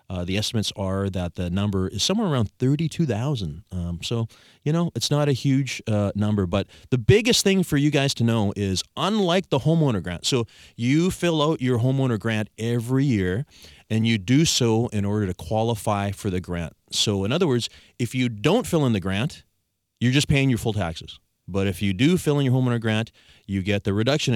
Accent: American